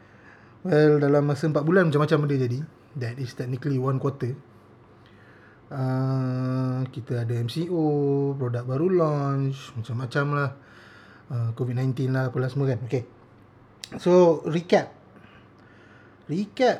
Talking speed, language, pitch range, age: 115 wpm, Malay, 120-150 Hz, 20-39